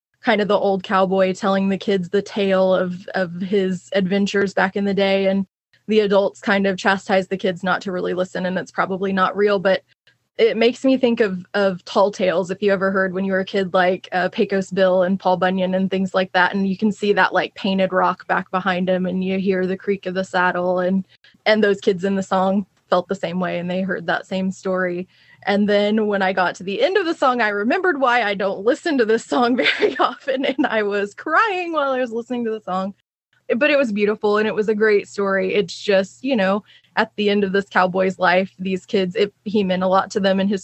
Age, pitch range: 20-39, 185-210 Hz